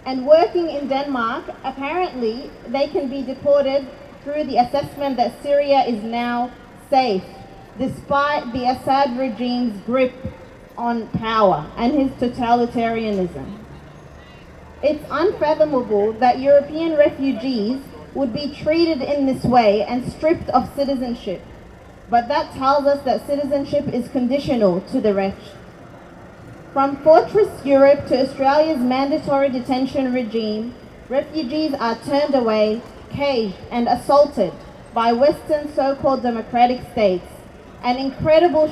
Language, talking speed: English, 115 wpm